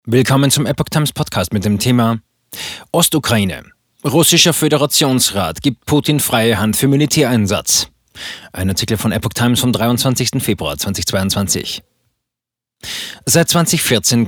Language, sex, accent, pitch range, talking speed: German, male, German, 110-130 Hz, 120 wpm